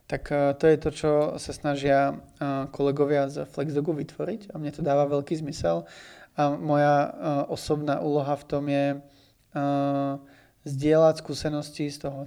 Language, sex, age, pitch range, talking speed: Czech, male, 20-39, 140-150 Hz, 140 wpm